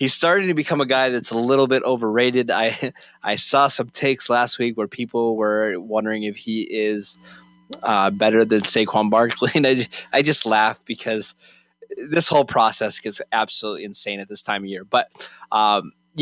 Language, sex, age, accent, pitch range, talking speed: English, male, 20-39, American, 110-130 Hz, 180 wpm